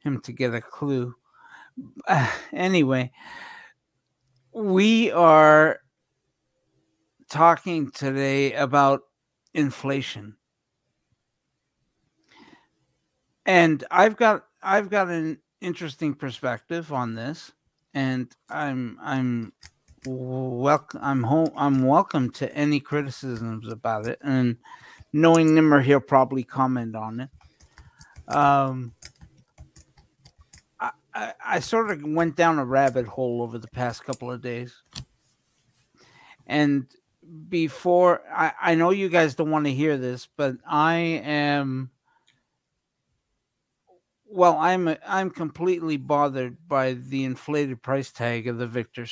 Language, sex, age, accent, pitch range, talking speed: English, male, 60-79, American, 130-160 Hz, 110 wpm